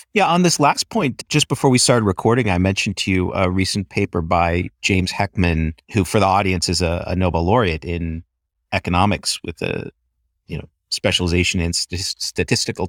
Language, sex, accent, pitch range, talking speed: English, male, American, 90-110 Hz, 175 wpm